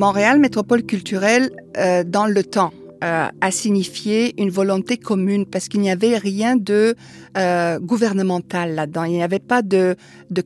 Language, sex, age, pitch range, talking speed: French, female, 50-69, 180-215 Hz, 160 wpm